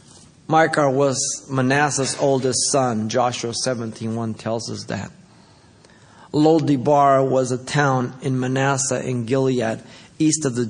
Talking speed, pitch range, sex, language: 120 wpm, 115-140 Hz, male, English